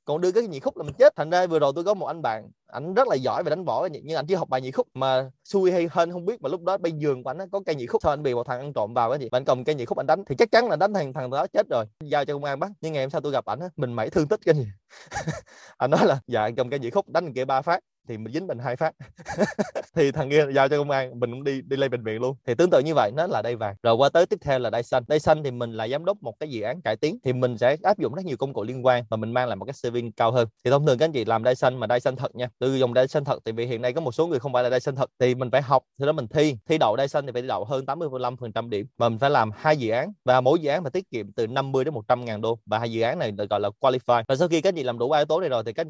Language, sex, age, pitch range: Vietnamese, male, 20-39, 120-155 Hz